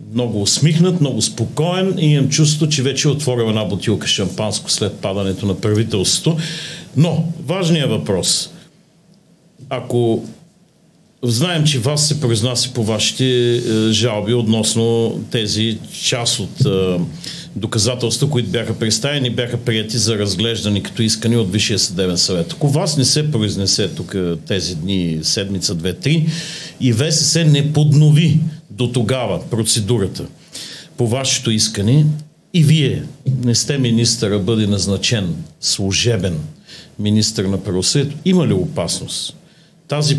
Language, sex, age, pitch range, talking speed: Bulgarian, male, 50-69, 110-155 Hz, 130 wpm